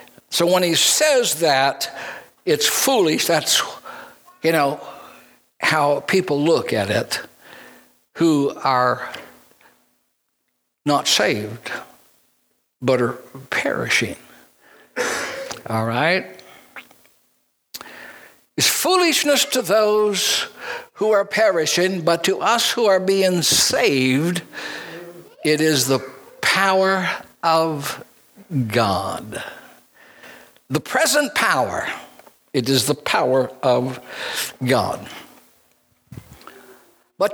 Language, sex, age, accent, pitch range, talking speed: English, male, 60-79, American, 145-220 Hz, 90 wpm